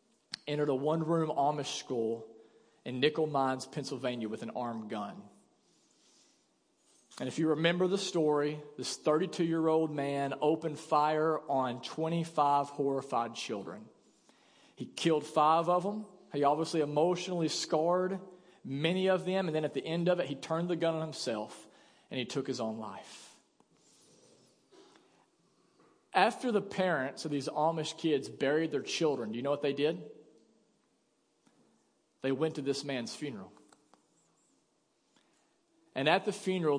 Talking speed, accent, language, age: 140 wpm, American, English, 40-59